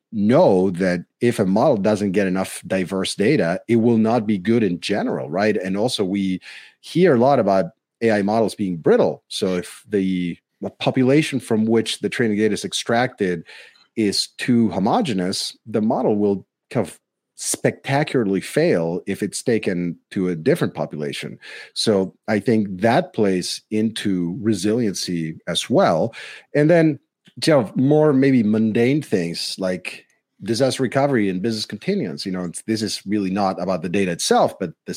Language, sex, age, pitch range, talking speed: English, male, 40-59, 95-120 Hz, 155 wpm